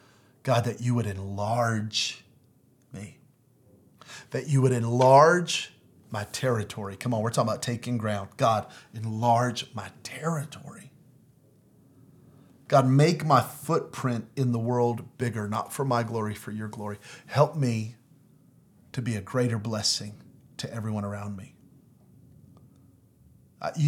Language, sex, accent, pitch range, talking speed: English, male, American, 120-155 Hz, 125 wpm